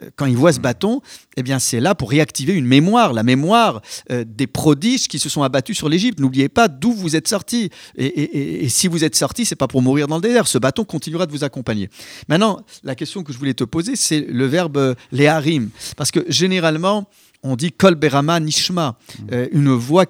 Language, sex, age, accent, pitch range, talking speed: French, male, 50-69, French, 130-180 Hz, 225 wpm